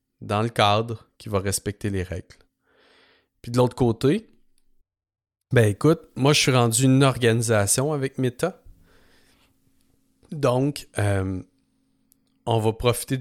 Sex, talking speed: male, 125 wpm